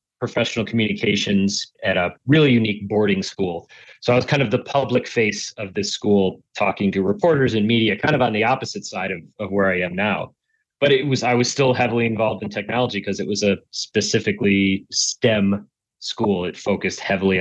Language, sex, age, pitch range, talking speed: English, male, 30-49, 100-120 Hz, 195 wpm